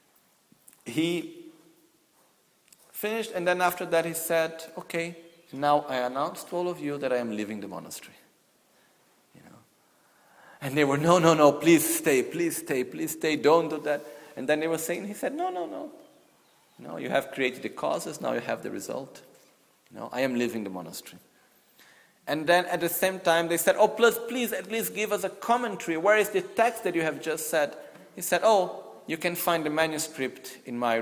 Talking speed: 195 wpm